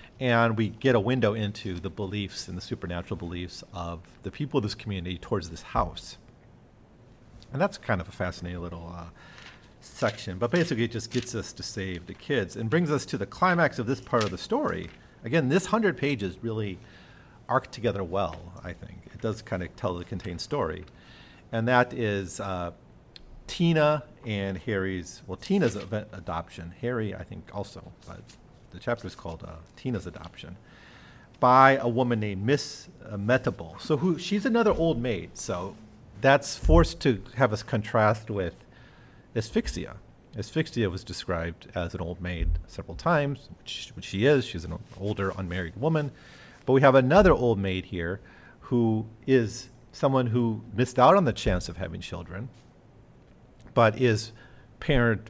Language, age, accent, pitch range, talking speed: English, 40-59, American, 95-125 Hz, 165 wpm